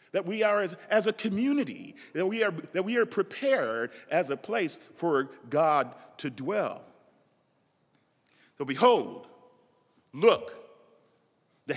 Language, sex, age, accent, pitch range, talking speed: English, male, 40-59, American, 150-230 Hz, 115 wpm